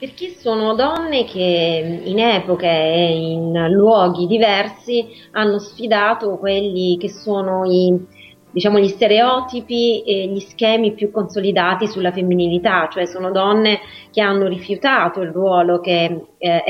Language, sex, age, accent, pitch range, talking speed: Italian, female, 30-49, native, 175-210 Hz, 130 wpm